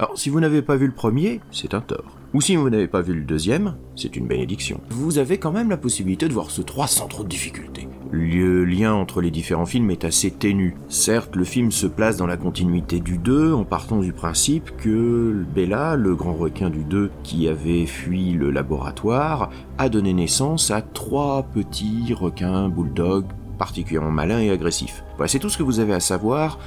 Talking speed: 205 wpm